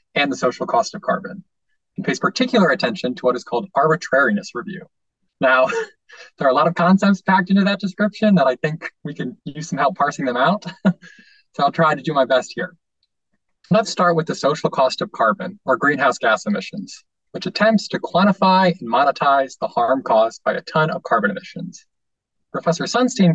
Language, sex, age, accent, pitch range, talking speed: English, male, 20-39, American, 135-195 Hz, 195 wpm